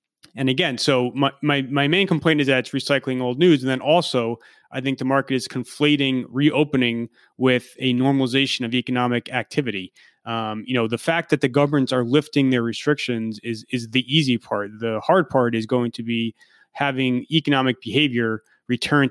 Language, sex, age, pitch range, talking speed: English, male, 30-49, 115-140 Hz, 180 wpm